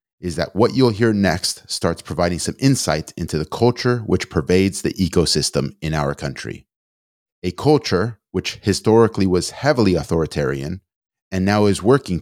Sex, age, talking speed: male, 30-49, 150 wpm